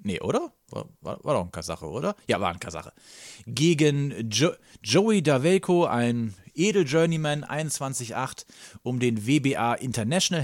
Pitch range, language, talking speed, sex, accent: 115-145 Hz, German, 125 wpm, male, German